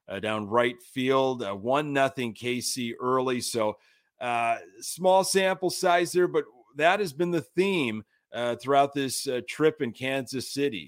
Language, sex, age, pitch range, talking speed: English, male, 30-49, 125-170 Hz, 160 wpm